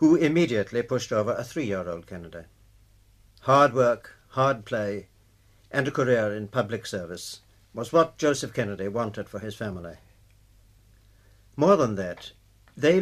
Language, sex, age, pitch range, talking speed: English, male, 60-79, 100-120 Hz, 135 wpm